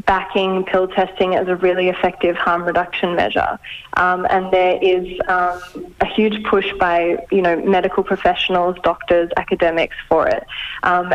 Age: 10-29